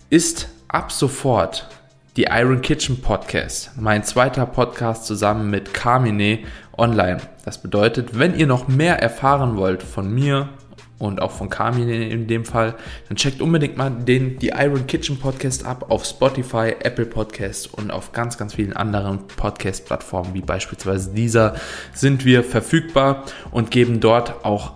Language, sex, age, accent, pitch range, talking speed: German, male, 20-39, German, 105-130 Hz, 155 wpm